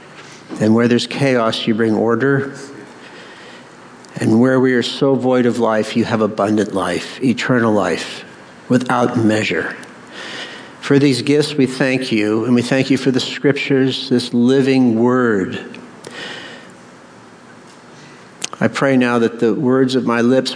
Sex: male